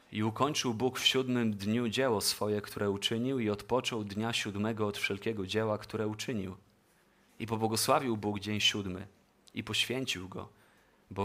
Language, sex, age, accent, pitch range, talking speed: Polish, male, 30-49, native, 100-120 Hz, 150 wpm